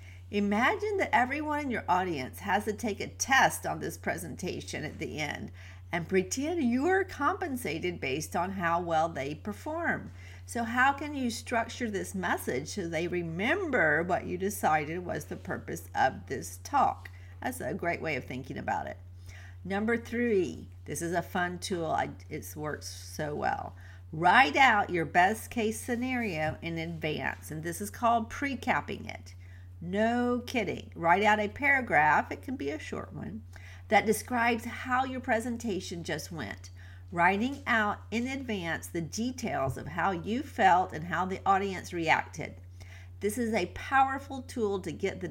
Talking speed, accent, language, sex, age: 160 wpm, American, English, female, 50-69